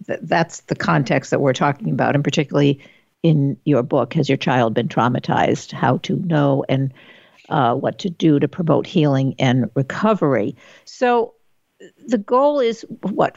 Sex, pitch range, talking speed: female, 150-195 Hz, 155 wpm